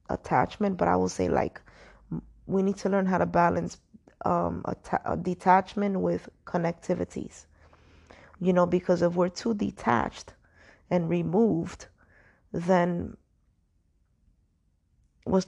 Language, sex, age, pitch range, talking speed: English, female, 20-39, 155-190 Hz, 115 wpm